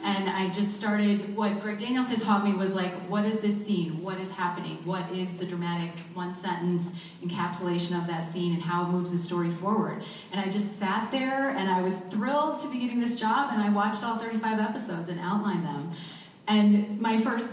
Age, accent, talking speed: 30-49, American, 210 wpm